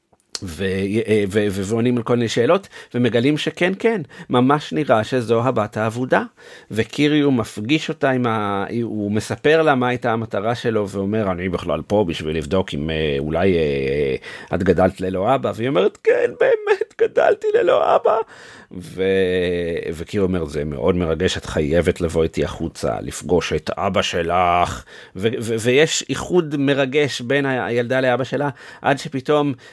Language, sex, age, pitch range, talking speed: Hebrew, male, 50-69, 100-150 Hz, 150 wpm